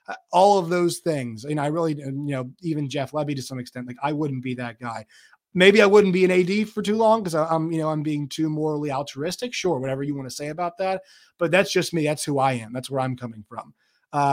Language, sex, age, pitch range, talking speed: English, male, 30-49, 135-165 Hz, 255 wpm